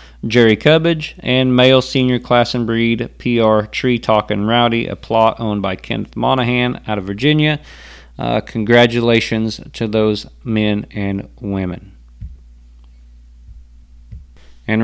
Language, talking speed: English, 115 wpm